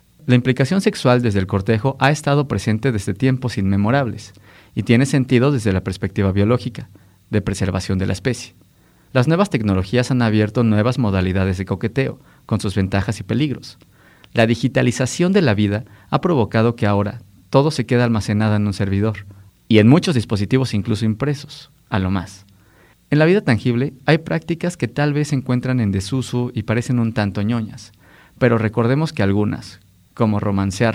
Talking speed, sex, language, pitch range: 170 wpm, male, Spanish, 105-135 Hz